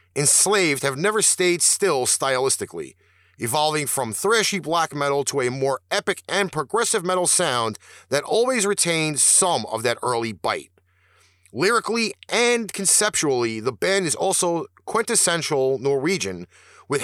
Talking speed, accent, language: 130 wpm, American, English